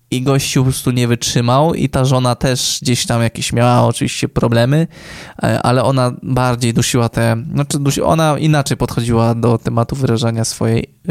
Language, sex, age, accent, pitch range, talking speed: Polish, male, 20-39, native, 120-140 Hz, 160 wpm